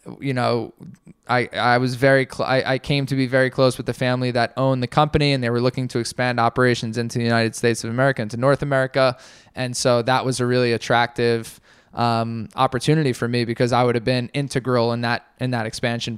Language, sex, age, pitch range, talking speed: English, male, 10-29, 115-140 Hz, 220 wpm